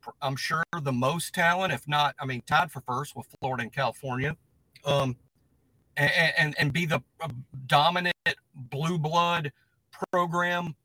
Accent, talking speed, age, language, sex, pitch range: American, 145 wpm, 40-59, English, male, 130-165 Hz